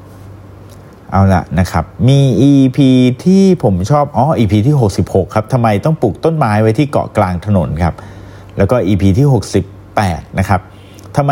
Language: Thai